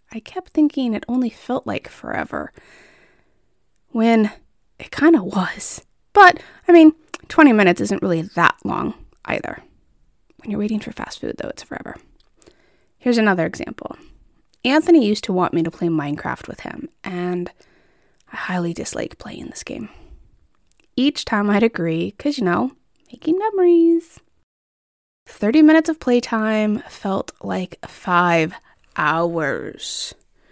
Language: English